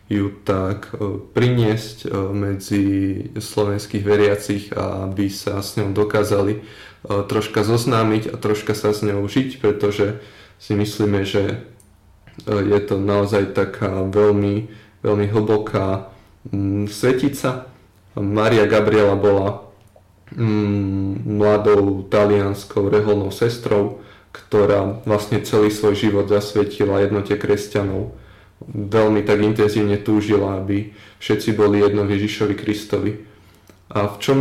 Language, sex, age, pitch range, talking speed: Slovak, male, 20-39, 100-105 Hz, 105 wpm